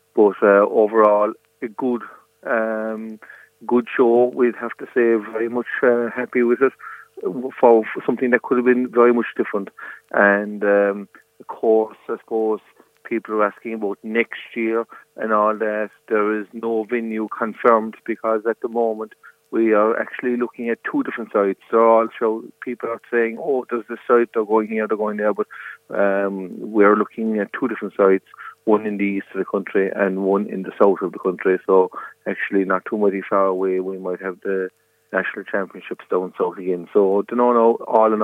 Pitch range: 100-115 Hz